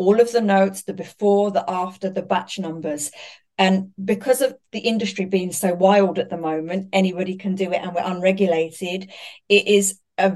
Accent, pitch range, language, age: British, 175-205 Hz, English, 40-59